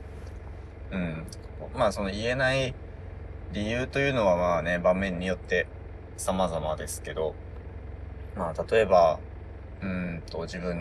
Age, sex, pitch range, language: 20-39, male, 85-95 Hz, Japanese